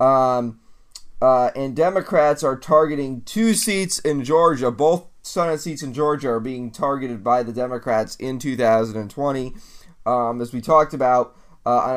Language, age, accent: English, 30-49, American